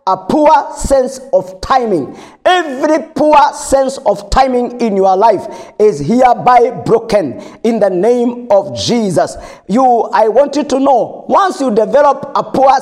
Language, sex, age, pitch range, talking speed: English, male, 50-69, 230-310 Hz, 150 wpm